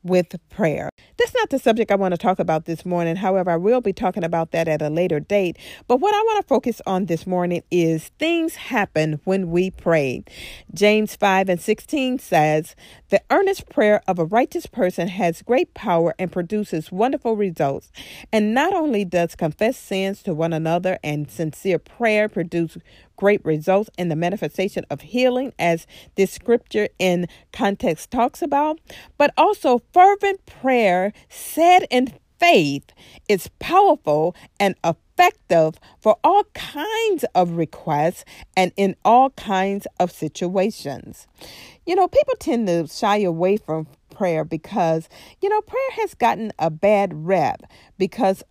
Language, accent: English, American